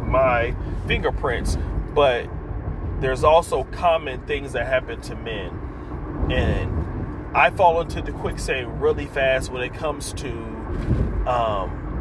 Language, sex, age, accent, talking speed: English, male, 30-49, American, 120 wpm